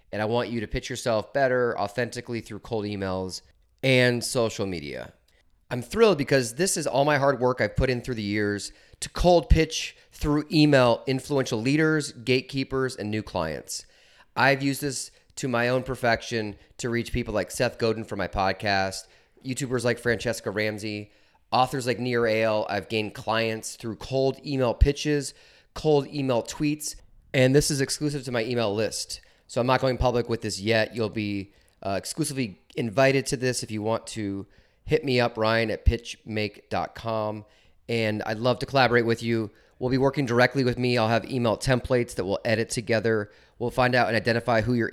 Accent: American